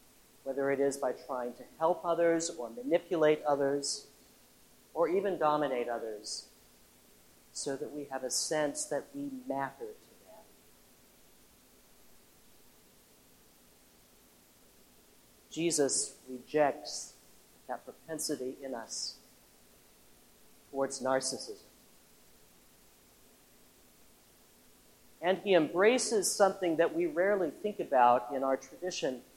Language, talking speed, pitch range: English, 95 wpm, 140-185 Hz